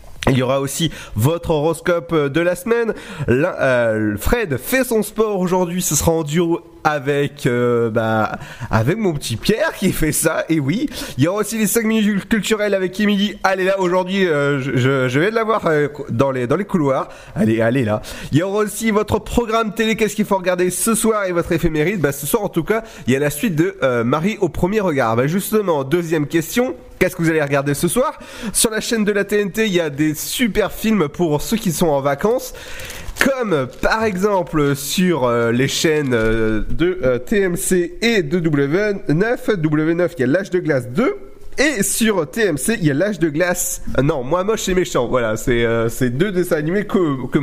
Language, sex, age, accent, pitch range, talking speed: French, male, 30-49, French, 145-210 Hz, 210 wpm